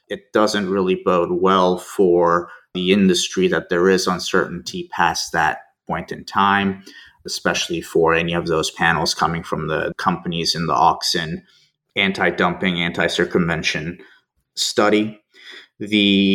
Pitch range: 90-130 Hz